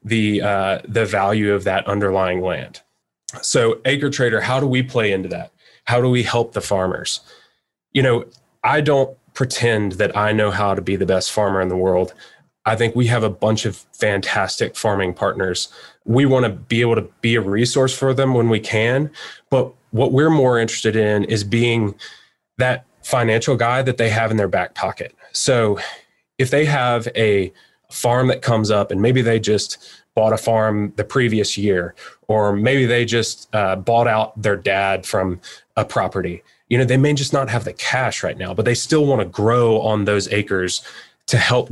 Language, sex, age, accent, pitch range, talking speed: English, male, 20-39, American, 105-125 Hz, 190 wpm